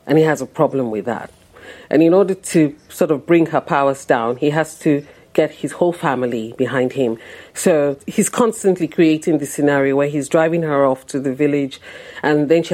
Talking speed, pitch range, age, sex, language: 205 wpm, 150-210 Hz, 40-59, female, English